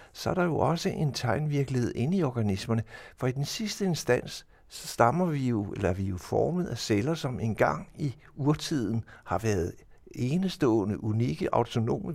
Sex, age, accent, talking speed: male, 60-79, native, 175 wpm